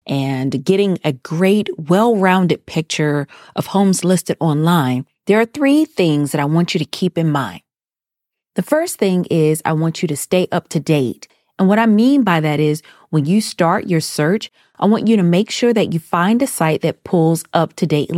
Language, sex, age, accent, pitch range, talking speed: English, female, 30-49, American, 150-190 Hz, 200 wpm